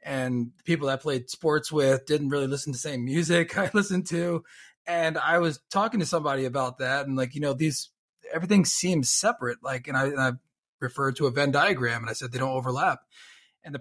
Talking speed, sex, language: 225 wpm, male, English